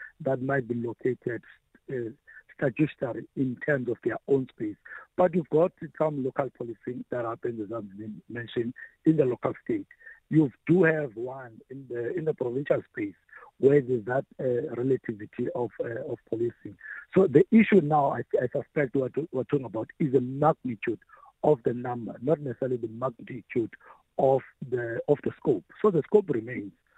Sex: male